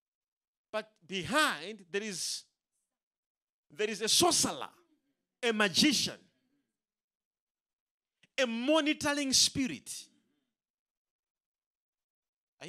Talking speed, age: 65 wpm, 40-59